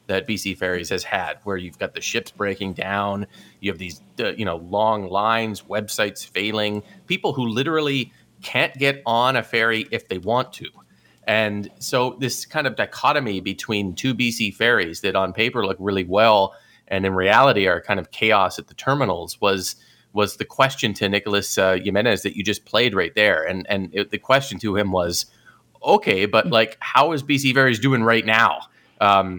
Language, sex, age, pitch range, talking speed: English, male, 30-49, 100-135 Hz, 190 wpm